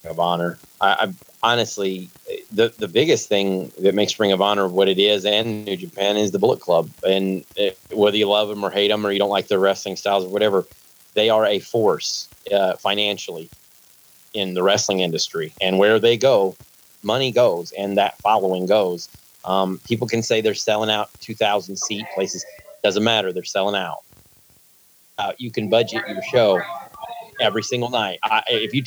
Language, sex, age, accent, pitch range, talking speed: English, male, 30-49, American, 95-125 Hz, 185 wpm